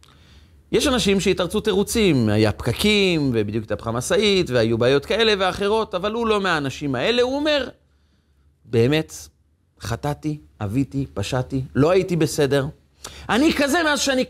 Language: Hebrew